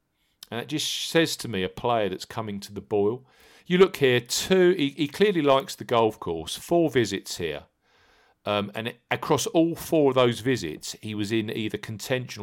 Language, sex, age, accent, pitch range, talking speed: English, male, 50-69, British, 100-130 Hz, 195 wpm